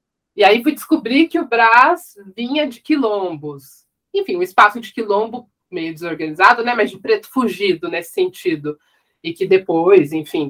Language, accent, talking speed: Portuguese, Brazilian, 165 wpm